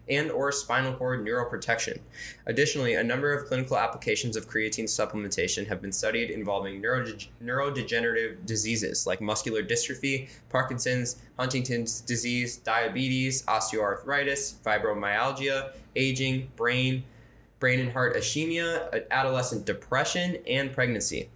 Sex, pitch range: male, 115-135 Hz